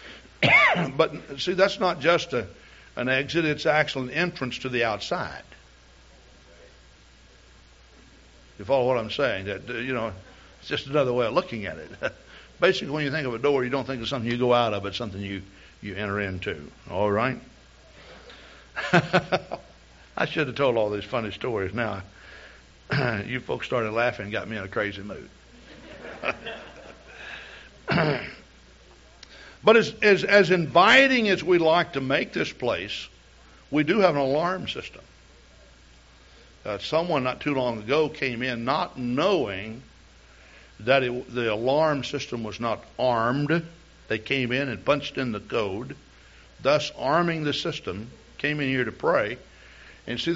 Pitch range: 95-145 Hz